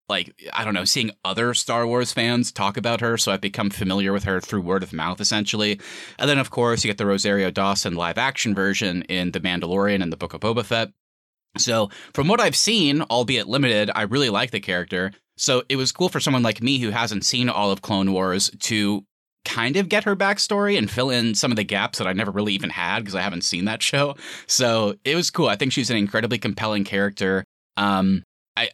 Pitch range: 100-120 Hz